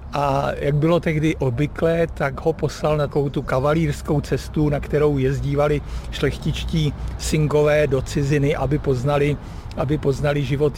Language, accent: Czech, native